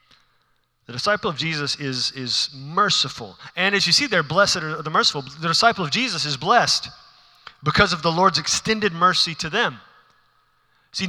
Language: English